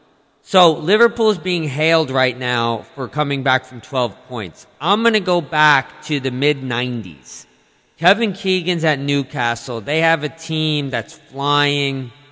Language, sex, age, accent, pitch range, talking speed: English, male, 40-59, American, 130-155 Hz, 150 wpm